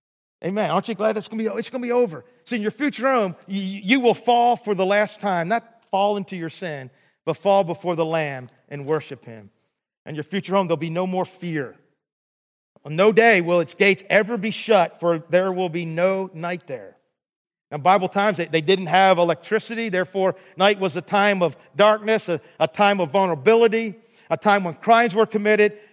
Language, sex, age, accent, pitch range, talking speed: Russian, male, 40-59, American, 170-215 Hz, 205 wpm